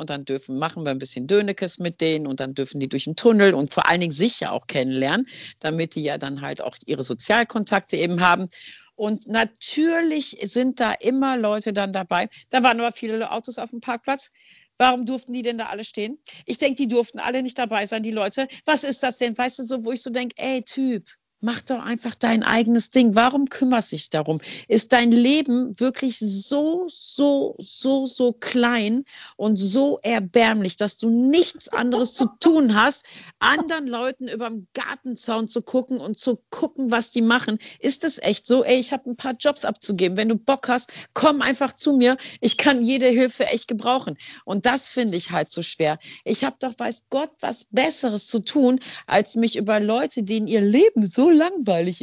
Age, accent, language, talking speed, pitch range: 50-69, German, German, 200 wpm, 210-265 Hz